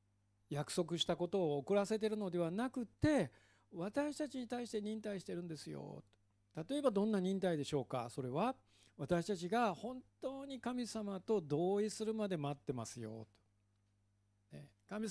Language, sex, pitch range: Japanese, male, 130-225 Hz